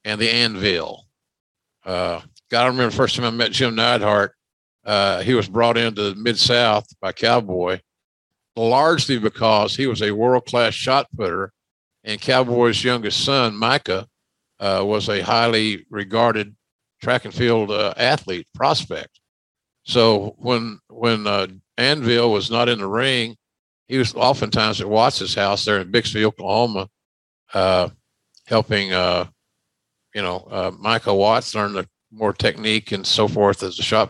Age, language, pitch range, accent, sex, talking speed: 50-69, English, 105-120 Hz, American, male, 150 wpm